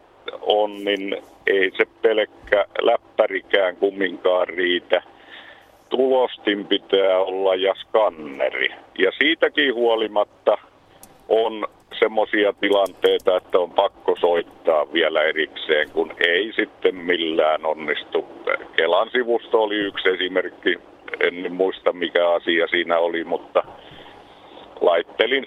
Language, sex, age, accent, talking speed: Finnish, male, 50-69, native, 100 wpm